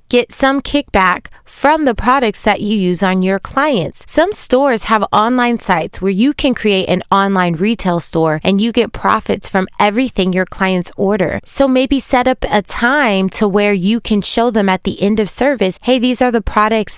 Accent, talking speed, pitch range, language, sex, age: American, 200 wpm, 185-255 Hz, English, female, 20-39